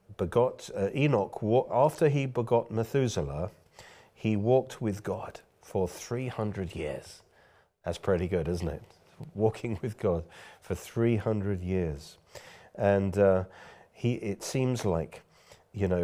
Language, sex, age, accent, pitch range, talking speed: English, male, 40-59, British, 85-110 Hz, 125 wpm